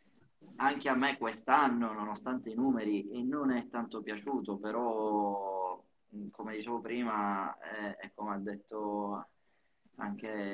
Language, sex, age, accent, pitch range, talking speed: Italian, male, 20-39, native, 100-115 Hz, 125 wpm